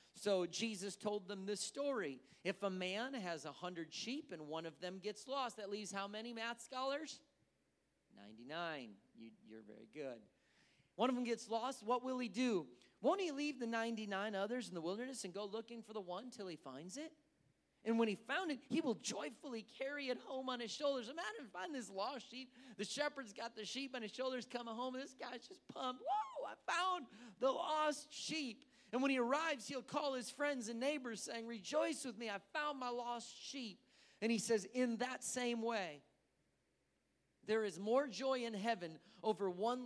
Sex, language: male, English